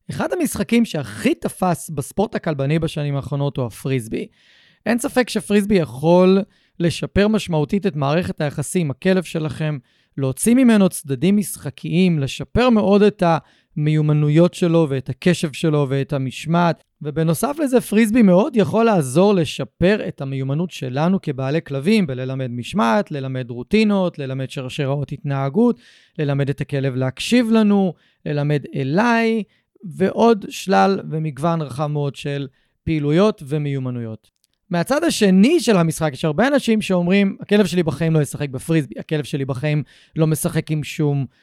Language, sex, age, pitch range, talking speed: Hebrew, male, 30-49, 140-195 Hz, 130 wpm